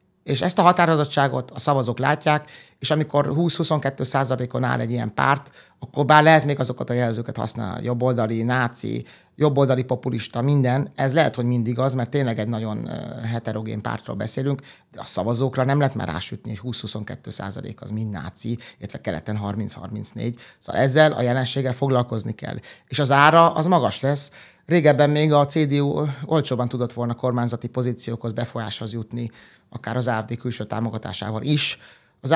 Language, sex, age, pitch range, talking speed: Hungarian, male, 30-49, 115-140 Hz, 160 wpm